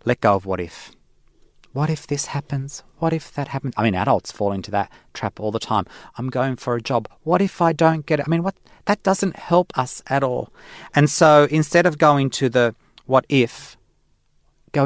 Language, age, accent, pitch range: English, 40-59, Australian, 105-135 Hz